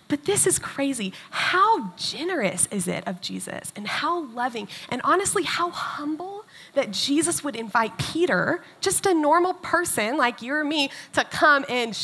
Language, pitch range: English, 230-360 Hz